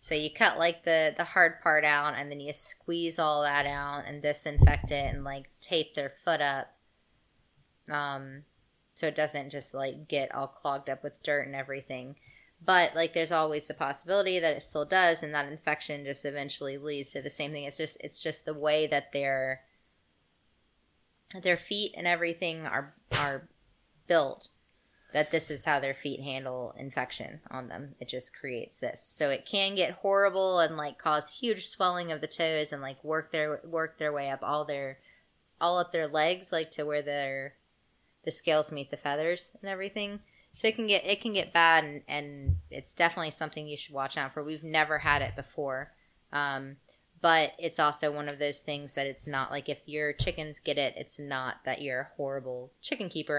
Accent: American